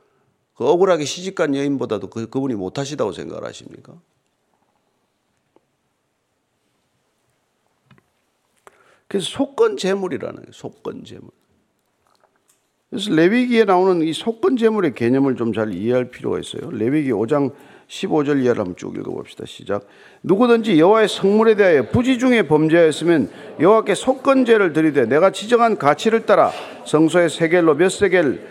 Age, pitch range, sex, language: 50-69, 150-215 Hz, male, Korean